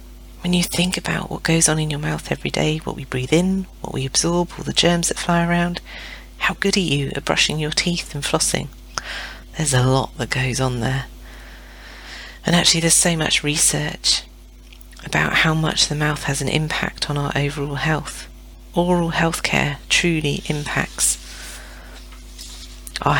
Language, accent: English, British